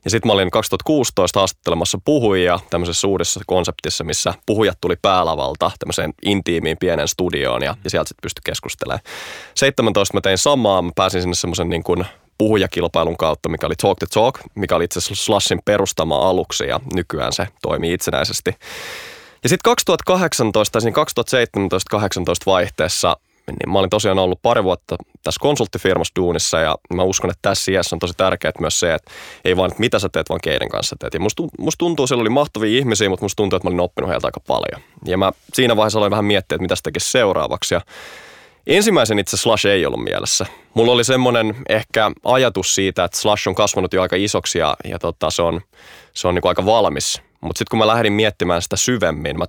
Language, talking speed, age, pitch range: Finnish, 195 wpm, 20-39, 90-110 Hz